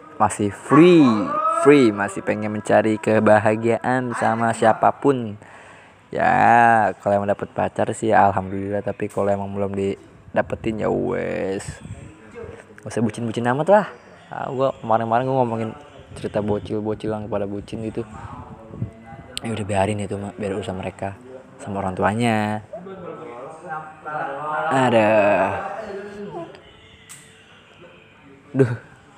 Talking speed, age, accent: 105 wpm, 20-39, native